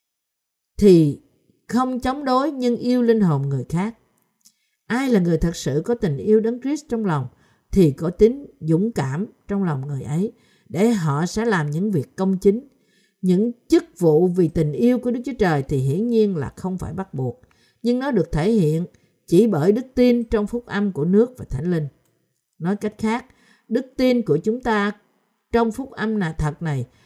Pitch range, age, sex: 155-225 Hz, 50-69, female